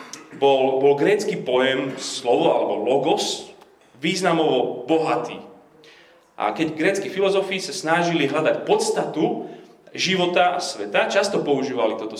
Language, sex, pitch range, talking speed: Slovak, male, 130-180 Hz, 115 wpm